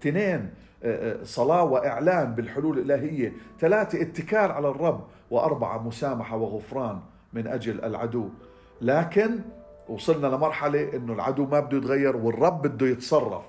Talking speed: 115 wpm